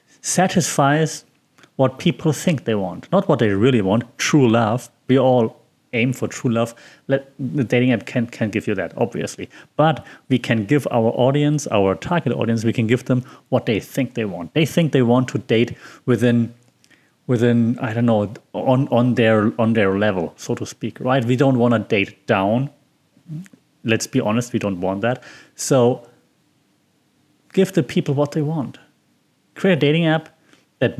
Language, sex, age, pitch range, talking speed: English, male, 30-49, 115-145 Hz, 180 wpm